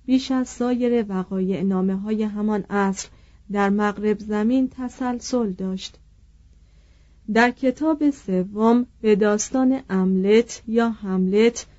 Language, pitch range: Persian, 190-240 Hz